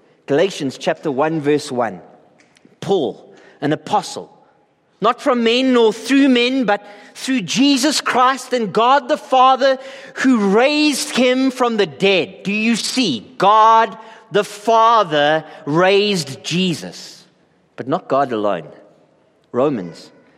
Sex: male